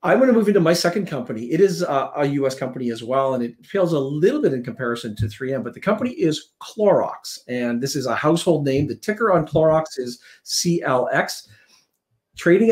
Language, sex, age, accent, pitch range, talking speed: English, male, 50-69, American, 125-160 Hz, 200 wpm